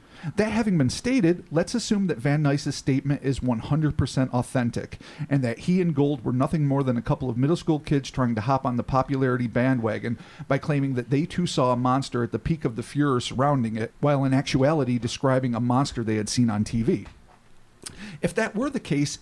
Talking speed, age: 210 wpm, 40-59